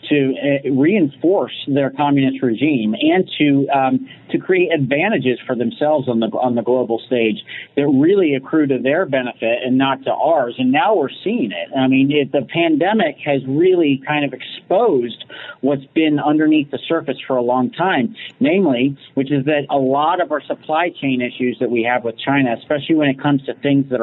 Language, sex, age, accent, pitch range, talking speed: English, male, 40-59, American, 125-150 Hz, 190 wpm